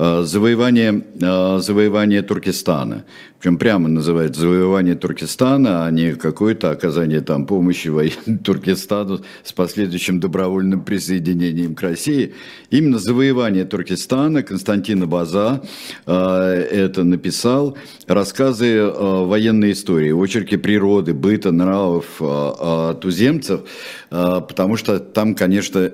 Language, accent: Russian, native